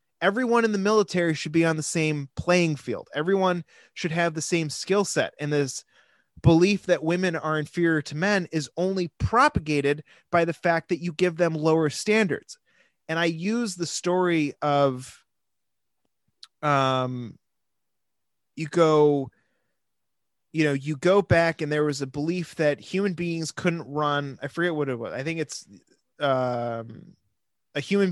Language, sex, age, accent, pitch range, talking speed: English, male, 30-49, American, 135-175 Hz, 160 wpm